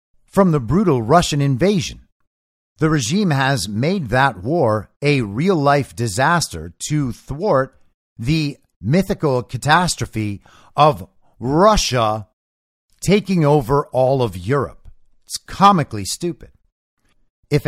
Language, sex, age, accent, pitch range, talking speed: English, male, 50-69, American, 115-155 Hz, 105 wpm